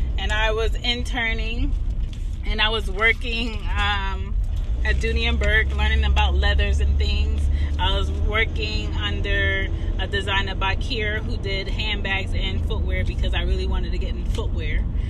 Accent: American